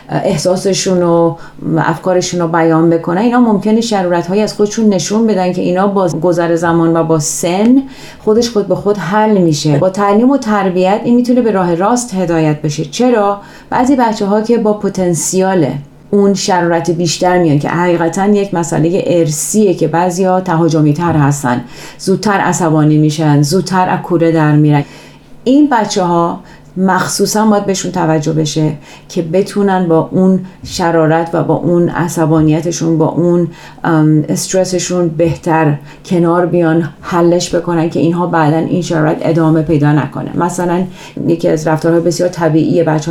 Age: 30-49